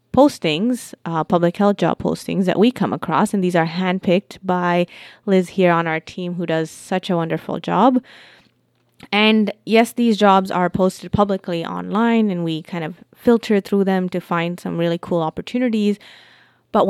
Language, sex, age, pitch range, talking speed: English, female, 20-39, 170-200 Hz, 170 wpm